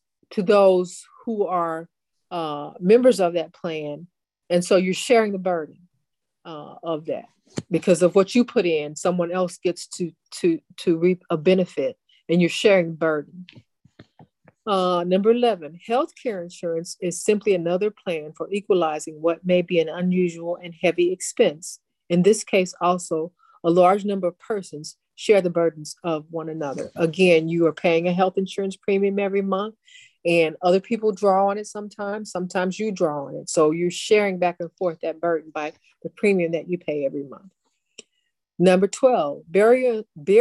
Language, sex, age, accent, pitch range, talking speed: English, female, 40-59, American, 165-200 Hz, 165 wpm